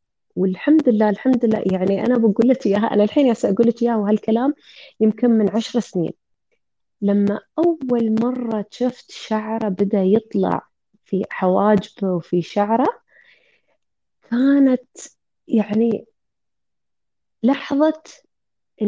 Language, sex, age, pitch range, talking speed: Arabic, female, 20-39, 210-275 Hz, 110 wpm